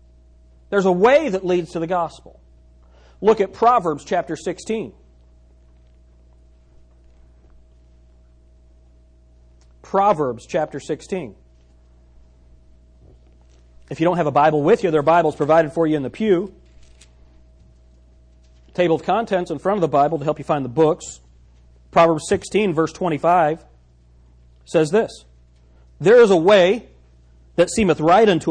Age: 40-59